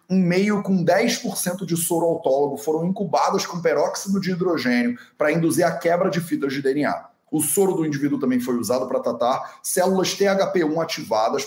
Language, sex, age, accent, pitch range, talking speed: Portuguese, male, 30-49, Brazilian, 145-195 Hz, 175 wpm